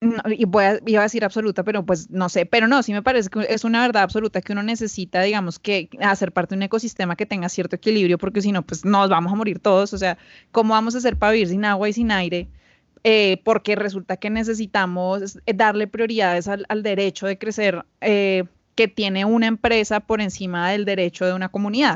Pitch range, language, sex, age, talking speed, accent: 190-225 Hz, Spanish, female, 20-39, 225 wpm, Colombian